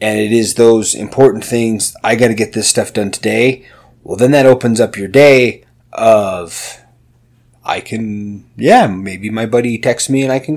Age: 30-49